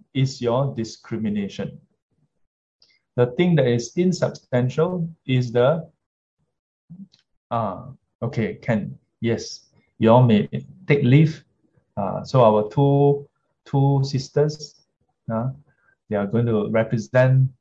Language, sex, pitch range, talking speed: English, male, 115-140 Hz, 110 wpm